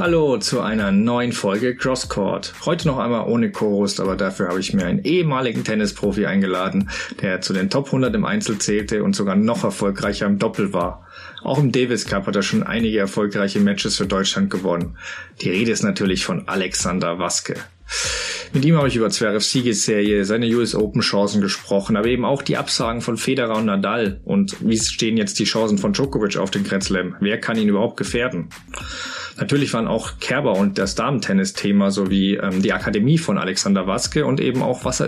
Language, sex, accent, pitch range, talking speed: German, male, German, 100-140 Hz, 190 wpm